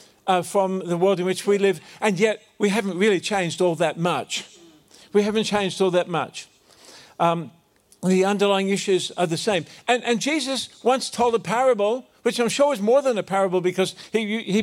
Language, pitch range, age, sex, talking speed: English, 190-230 Hz, 50-69, male, 195 wpm